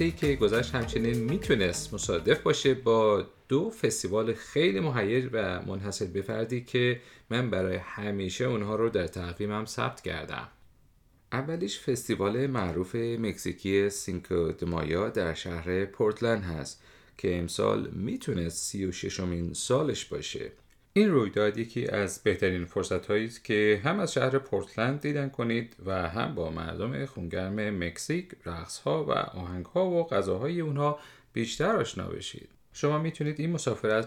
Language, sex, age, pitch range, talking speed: Persian, male, 30-49, 95-135 Hz, 135 wpm